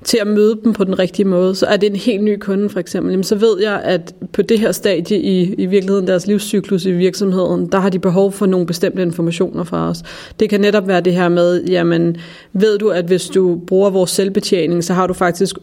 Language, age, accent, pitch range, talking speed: Danish, 30-49, native, 170-195 Hz, 225 wpm